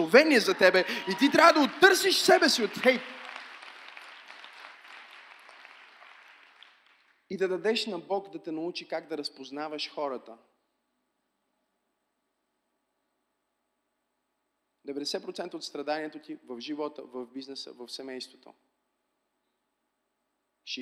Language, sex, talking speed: Bulgarian, male, 100 wpm